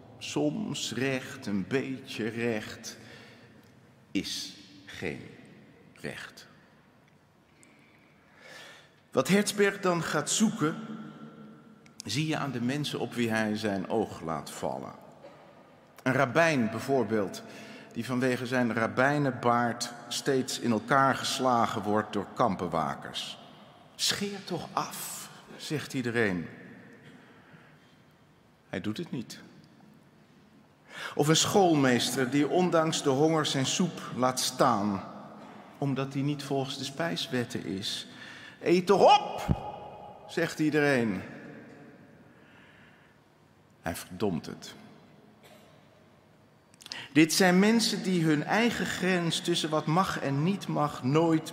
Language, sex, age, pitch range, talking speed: Dutch, male, 50-69, 120-160 Hz, 100 wpm